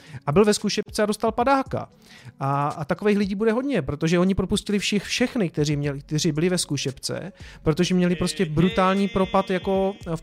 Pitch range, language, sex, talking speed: 150-190 Hz, Czech, male, 180 wpm